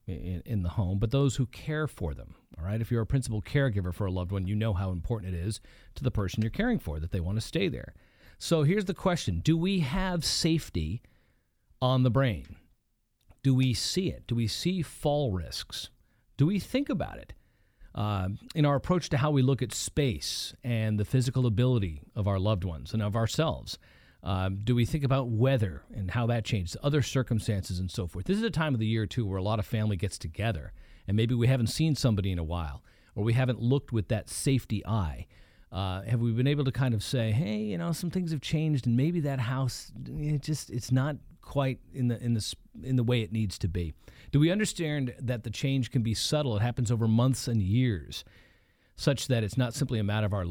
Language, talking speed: English, 225 wpm